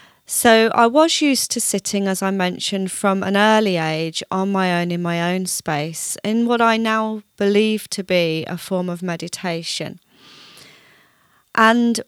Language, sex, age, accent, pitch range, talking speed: English, female, 30-49, British, 180-215 Hz, 160 wpm